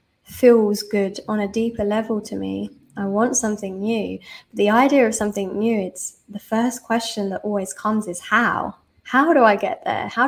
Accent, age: British, 20-39